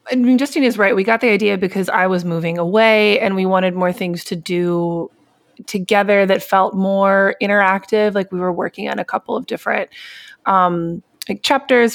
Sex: female